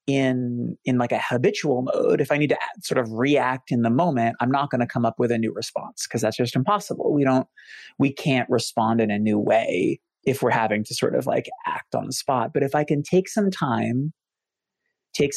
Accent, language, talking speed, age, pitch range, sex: American, English, 225 wpm, 30-49, 120-165 Hz, male